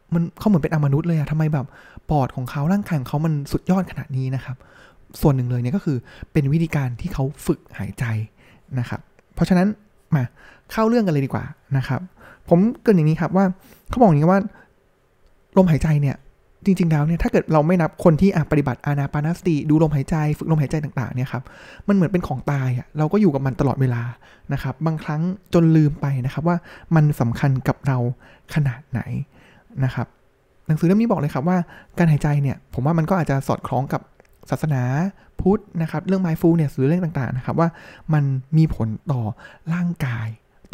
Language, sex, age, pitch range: Thai, male, 20-39, 130-170 Hz